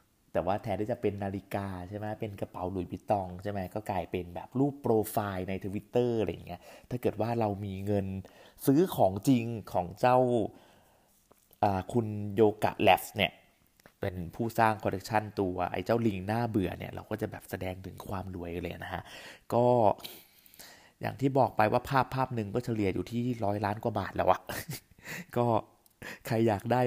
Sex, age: male, 20-39